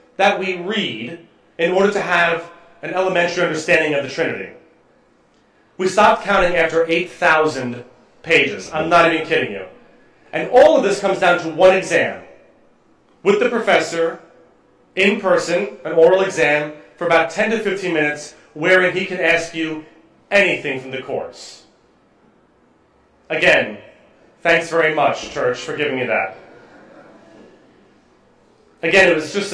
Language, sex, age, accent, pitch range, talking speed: English, male, 30-49, American, 165-200 Hz, 140 wpm